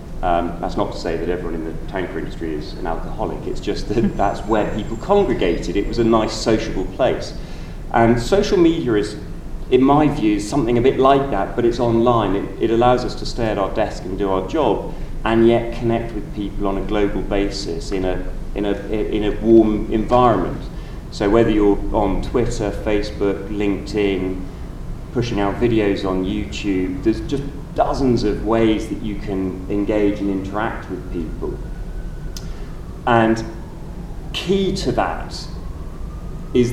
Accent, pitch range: British, 95-120 Hz